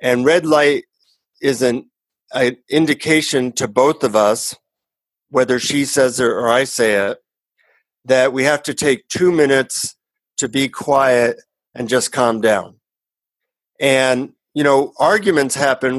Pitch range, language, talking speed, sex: 120-140 Hz, English, 145 wpm, male